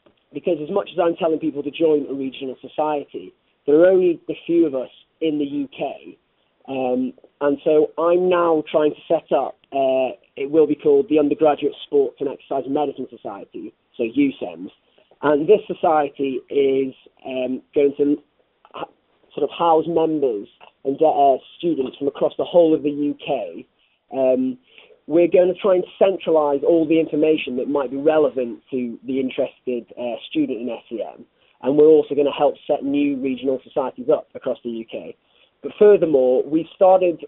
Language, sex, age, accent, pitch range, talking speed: English, male, 30-49, British, 135-170 Hz, 170 wpm